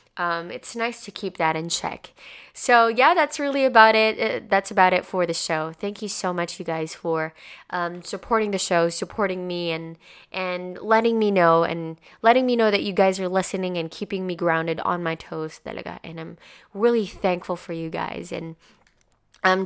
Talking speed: 200 wpm